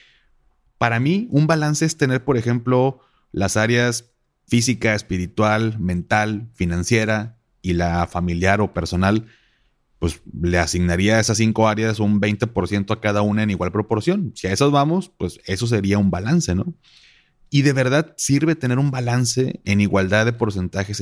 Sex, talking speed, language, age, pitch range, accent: male, 155 wpm, Spanish, 30-49, 95-115 Hz, Mexican